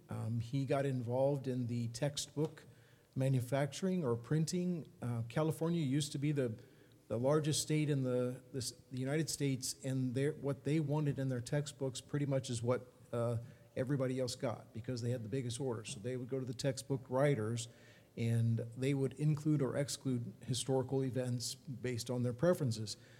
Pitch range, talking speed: 120-140 Hz, 170 wpm